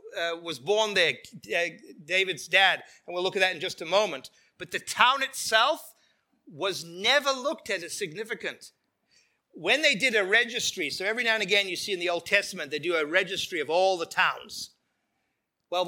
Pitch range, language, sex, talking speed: 180-240 Hz, English, male, 190 wpm